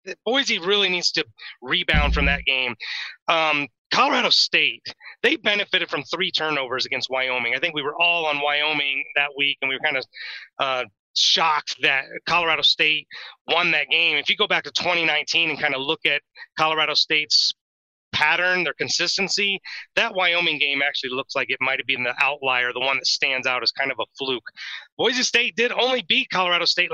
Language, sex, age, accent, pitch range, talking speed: English, male, 30-49, American, 150-185 Hz, 190 wpm